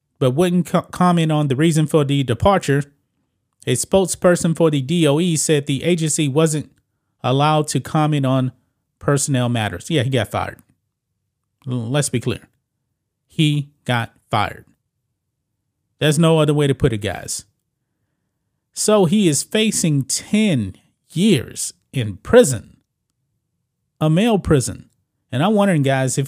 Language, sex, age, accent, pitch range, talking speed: English, male, 30-49, American, 125-155 Hz, 130 wpm